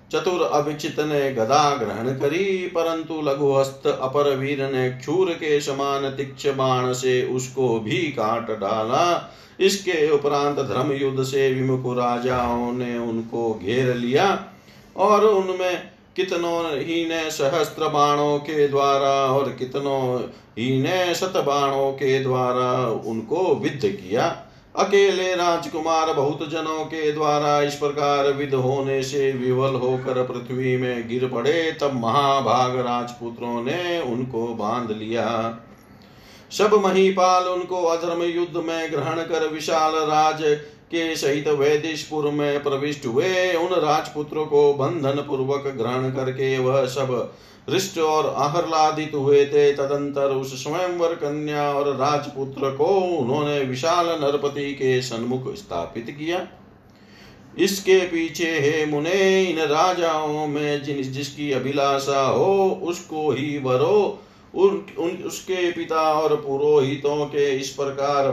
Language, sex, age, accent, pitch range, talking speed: Hindi, male, 50-69, native, 130-160 Hz, 120 wpm